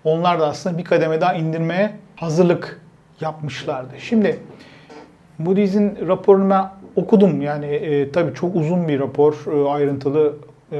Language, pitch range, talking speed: Turkish, 145-180 Hz, 130 wpm